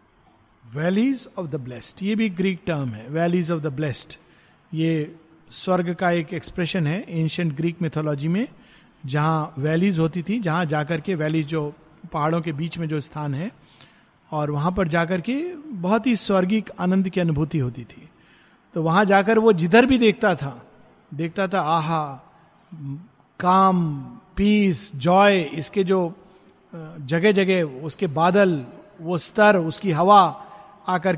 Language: Hindi